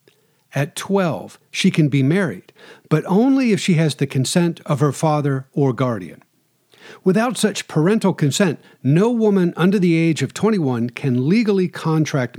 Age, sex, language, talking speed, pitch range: 50-69, male, English, 155 wpm, 140-195 Hz